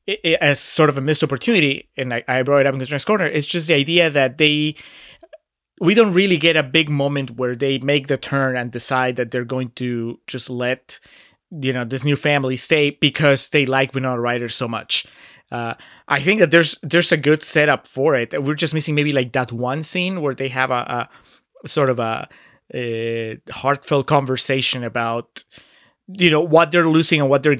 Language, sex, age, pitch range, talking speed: English, male, 30-49, 130-155 Hz, 210 wpm